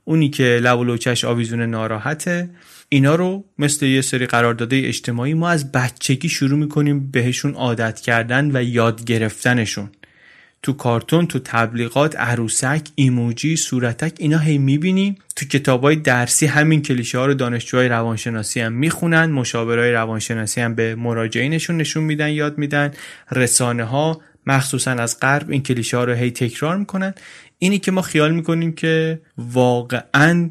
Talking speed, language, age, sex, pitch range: 140 wpm, Persian, 30-49, male, 120-145 Hz